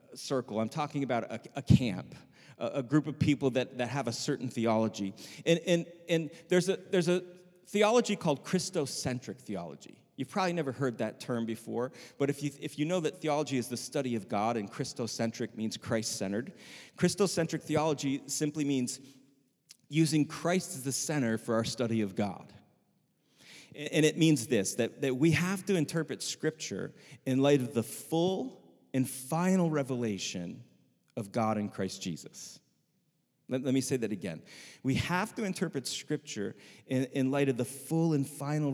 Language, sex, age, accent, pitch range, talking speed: English, male, 40-59, American, 120-160 Hz, 165 wpm